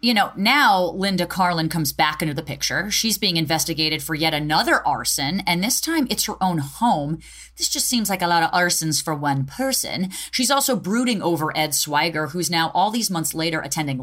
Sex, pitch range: female, 160-240 Hz